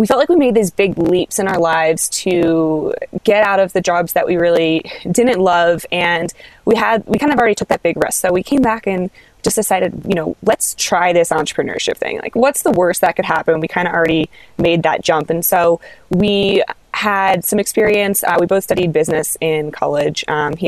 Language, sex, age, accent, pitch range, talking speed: English, female, 20-39, American, 170-215 Hz, 220 wpm